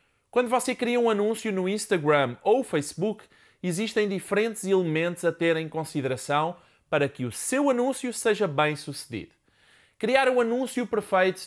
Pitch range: 165-230 Hz